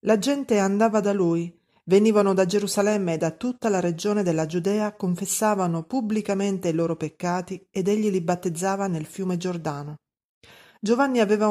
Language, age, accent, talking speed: Italian, 40-59, native, 150 wpm